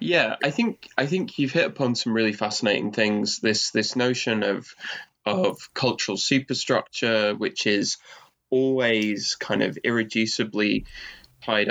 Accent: British